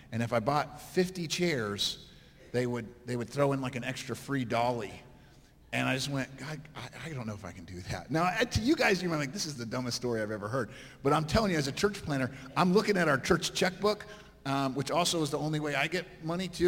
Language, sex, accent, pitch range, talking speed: English, male, American, 125-155 Hz, 260 wpm